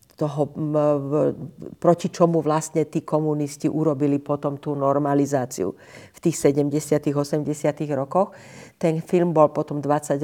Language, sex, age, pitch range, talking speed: Slovak, female, 50-69, 140-165 Hz, 115 wpm